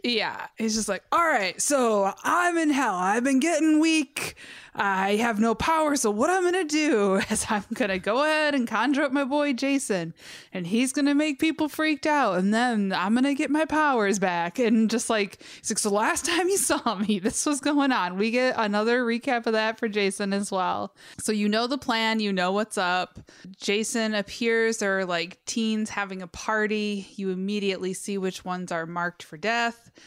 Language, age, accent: English, 20-39, American